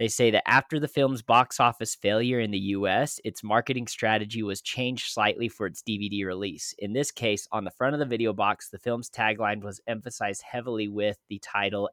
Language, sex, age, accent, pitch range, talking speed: English, male, 20-39, American, 105-125 Hz, 205 wpm